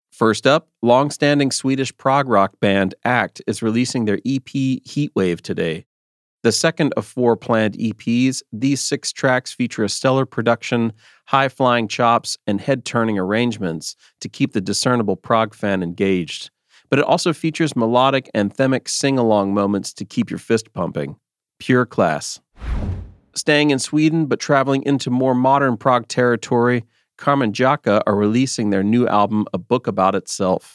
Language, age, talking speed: English, 40-59, 145 wpm